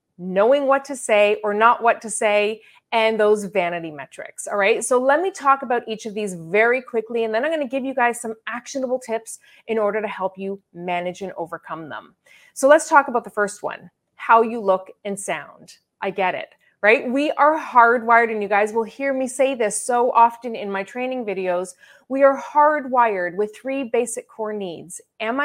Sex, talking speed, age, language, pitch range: female, 205 wpm, 30-49, English, 205-270 Hz